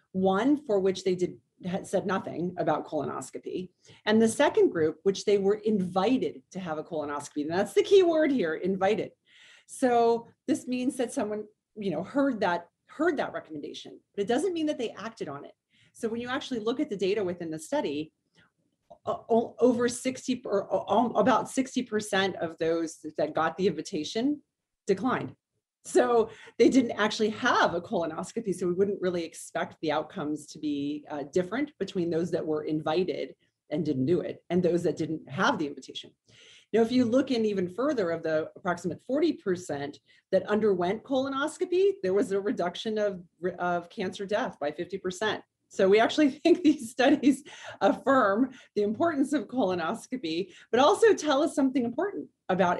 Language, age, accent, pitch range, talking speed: English, 30-49, American, 175-260 Hz, 170 wpm